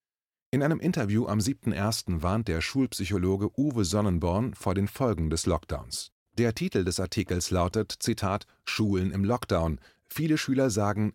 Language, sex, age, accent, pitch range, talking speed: German, male, 30-49, German, 90-120 Hz, 145 wpm